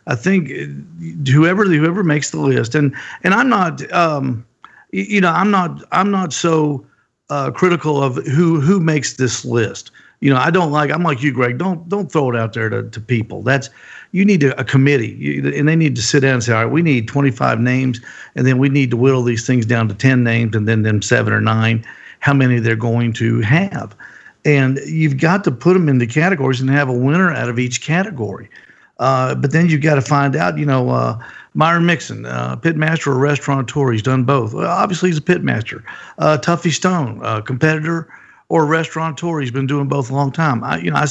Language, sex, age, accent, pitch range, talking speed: English, male, 50-69, American, 130-165 Hz, 215 wpm